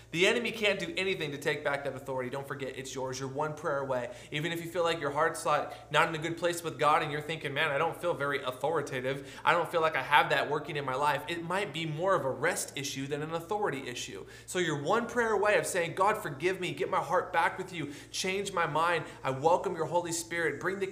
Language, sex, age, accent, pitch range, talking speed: English, male, 20-39, American, 130-175 Hz, 260 wpm